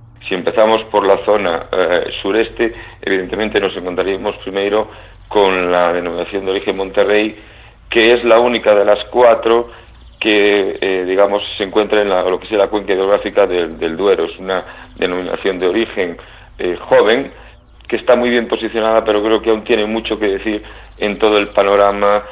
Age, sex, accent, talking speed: 50-69, male, Spanish, 170 wpm